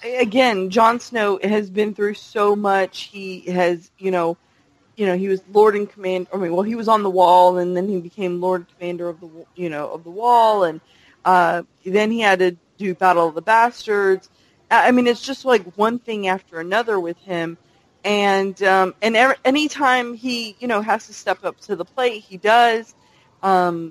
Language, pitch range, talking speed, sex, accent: English, 180-230 Hz, 200 wpm, female, American